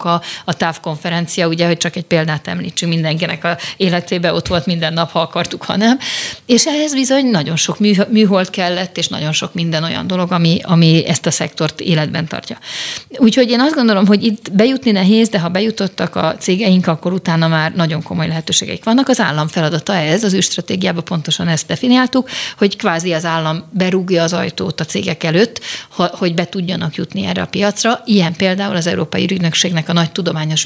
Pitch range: 165-210 Hz